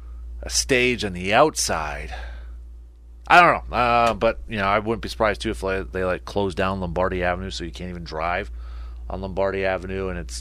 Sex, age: male, 30-49